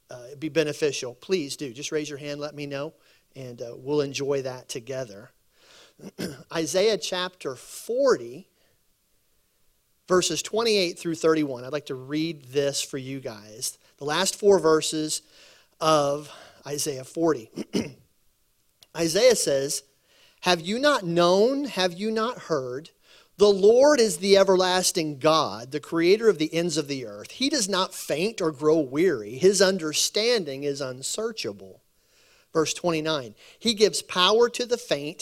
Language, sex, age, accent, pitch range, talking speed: English, male, 40-59, American, 145-200 Hz, 145 wpm